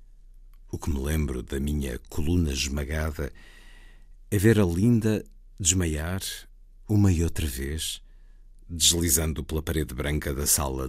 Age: 50-69